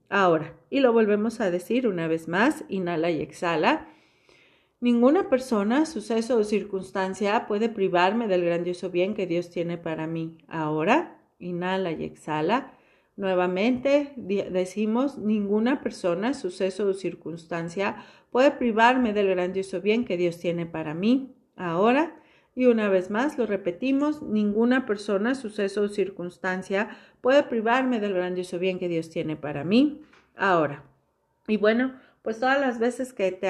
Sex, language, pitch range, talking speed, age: female, Spanish, 180-235 Hz, 140 wpm, 40-59